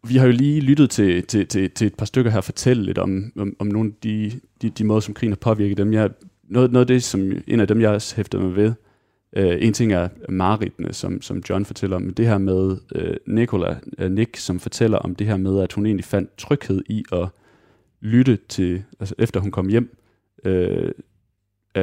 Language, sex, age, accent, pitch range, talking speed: Danish, male, 30-49, native, 95-115 Hz, 225 wpm